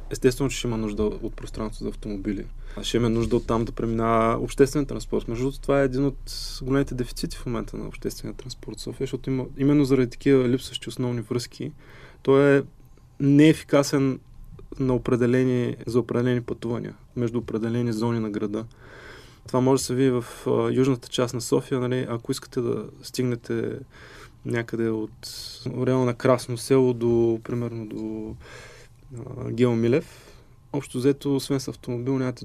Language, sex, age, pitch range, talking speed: Bulgarian, male, 20-39, 115-135 Hz, 155 wpm